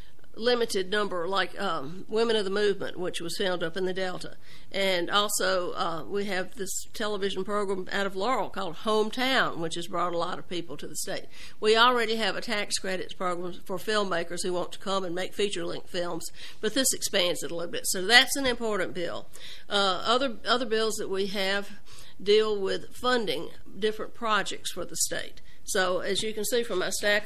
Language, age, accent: English, 50-69, American